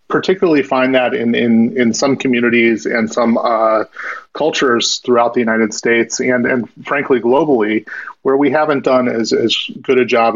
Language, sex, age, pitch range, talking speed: English, male, 30-49, 115-130 Hz, 170 wpm